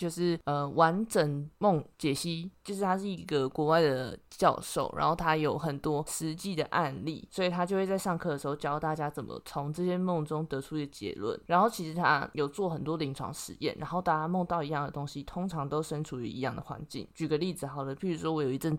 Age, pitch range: 20-39, 145-175 Hz